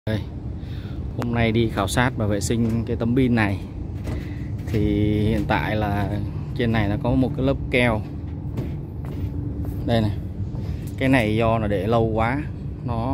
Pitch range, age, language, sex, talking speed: 100-115 Hz, 20-39, Vietnamese, male, 160 wpm